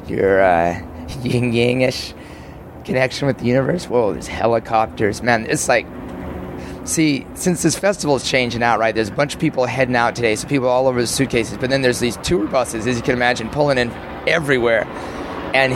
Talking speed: 195 wpm